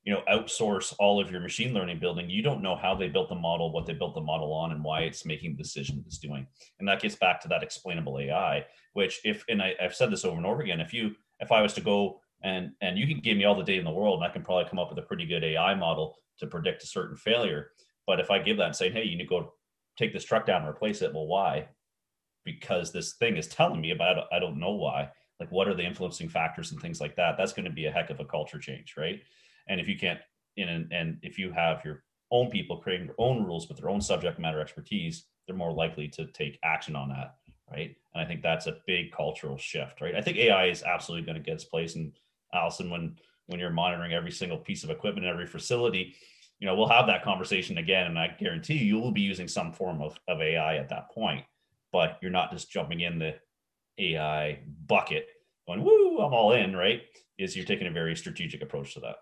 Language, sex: English, male